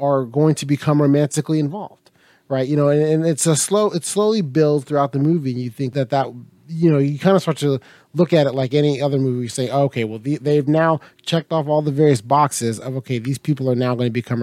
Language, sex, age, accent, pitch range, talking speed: English, male, 30-49, American, 130-160 Hz, 260 wpm